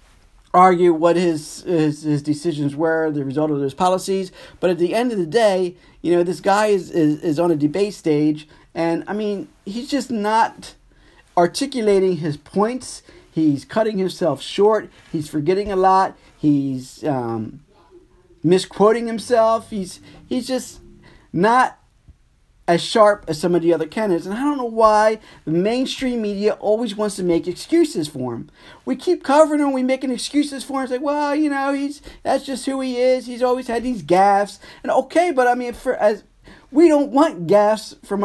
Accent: American